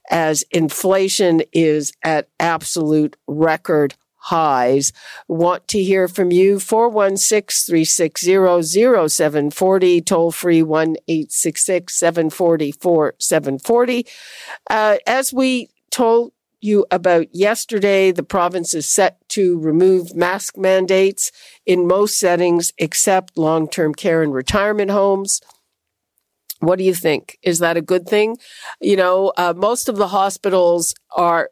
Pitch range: 160-195 Hz